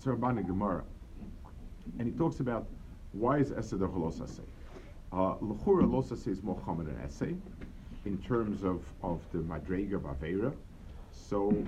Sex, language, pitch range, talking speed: male, English, 85-115 Hz, 120 wpm